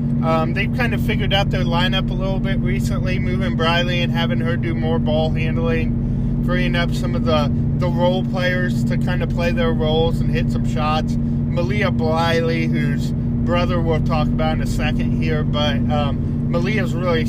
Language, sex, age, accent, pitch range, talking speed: English, male, 20-39, American, 115-125 Hz, 185 wpm